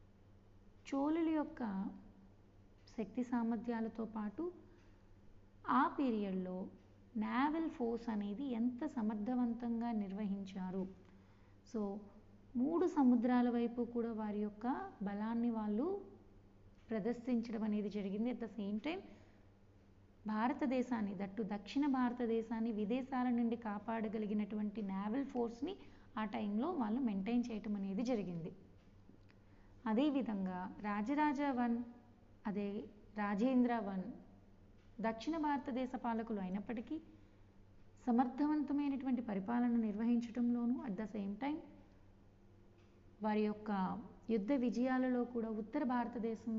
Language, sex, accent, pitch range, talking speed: Telugu, female, native, 190-245 Hz, 90 wpm